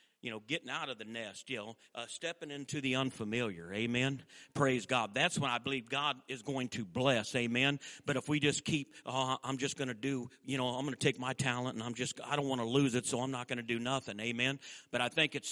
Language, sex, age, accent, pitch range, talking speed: English, male, 50-69, American, 130-165 Hz, 260 wpm